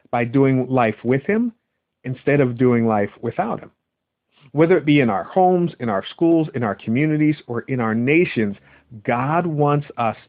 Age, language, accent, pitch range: 50-69, English, American, 115-155 Hz